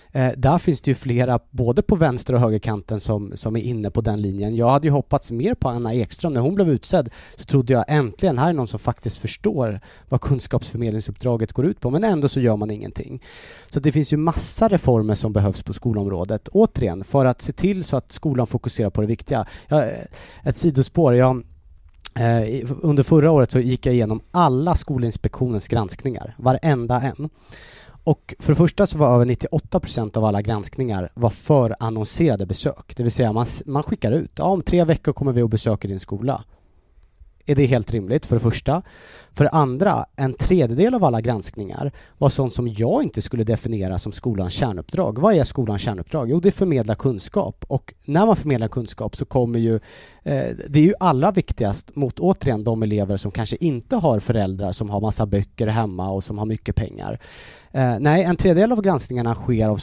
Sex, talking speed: male, 190 wpm